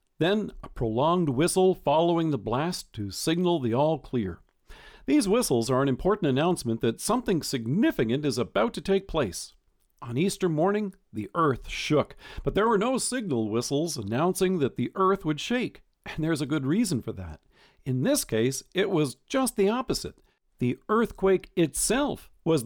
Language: English